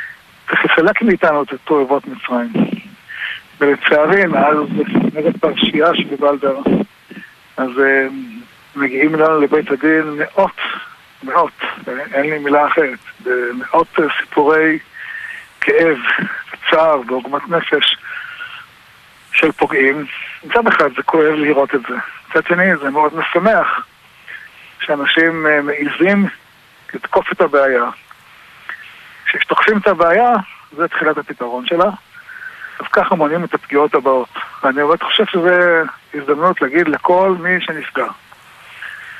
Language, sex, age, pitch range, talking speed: Hebrew, male, 60-79, 150-210 Hz, 105 wpm